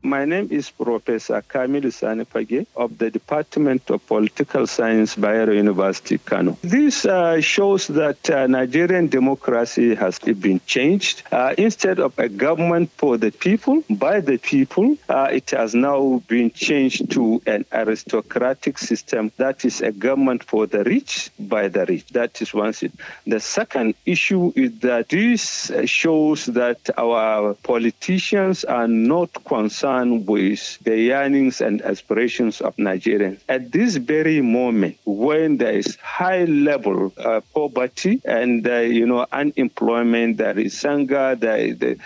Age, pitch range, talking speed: 50-69, 115-165 Hz, 145 wpm